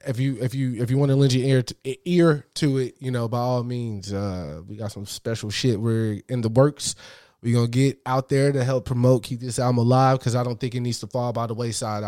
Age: 20-39